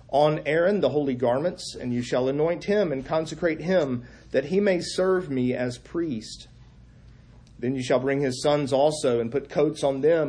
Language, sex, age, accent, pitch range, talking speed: English, male, 40-59, American, 125-170 Hz, 185 wpm